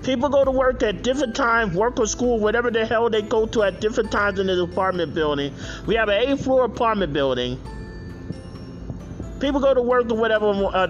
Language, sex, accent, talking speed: English, male, American, 200 wpm